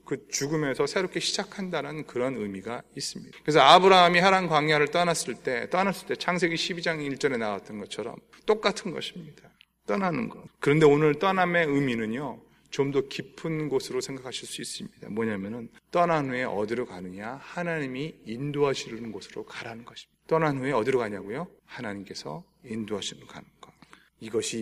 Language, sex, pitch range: Korean, male, 120-175 Hz